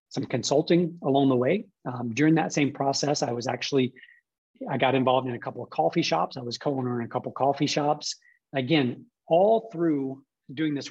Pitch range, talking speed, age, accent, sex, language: 130-150 Hz, 205 wpm, 30-49, American, male, English